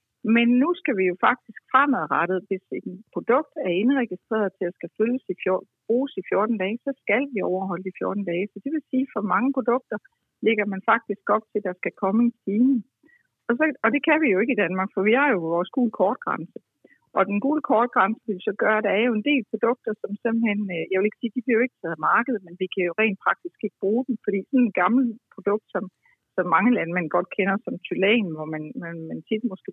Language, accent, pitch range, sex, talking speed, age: Danish, native, 185-240 Hz, female, 240 wpm, 60-79